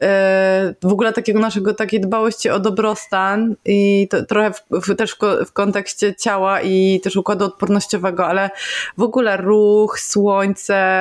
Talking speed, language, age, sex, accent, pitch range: 145 wpm, Polish, 20-39, female, native, 180-210 Hz